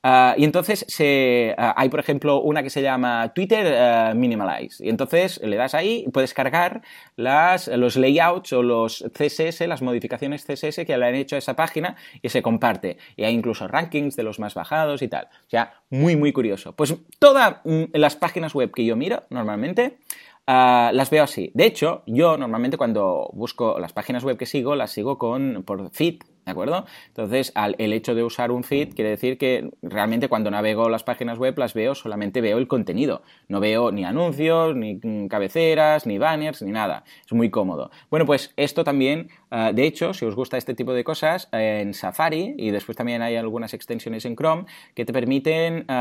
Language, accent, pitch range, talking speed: Spanish, Spanish, 115-155 Hz, 195 wpm